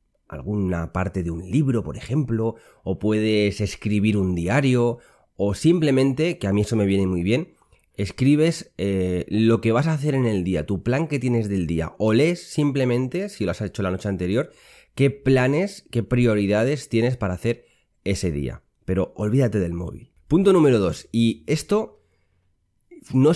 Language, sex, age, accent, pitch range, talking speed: Spanish, male, 30-49, Spanish, 95-135 Hz, 170 wpm